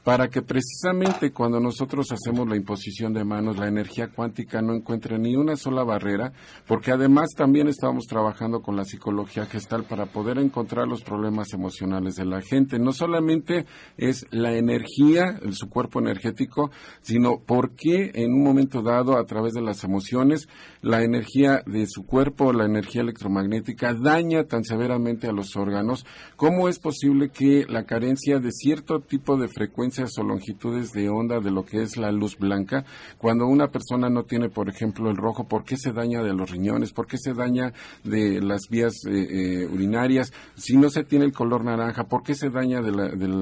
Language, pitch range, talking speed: Spanish, 105-130 Hz, 180 wpm